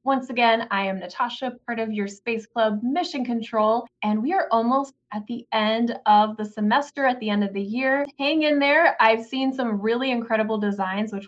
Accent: American